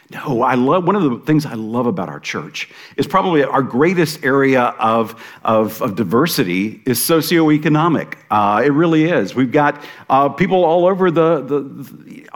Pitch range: 130-165 Hz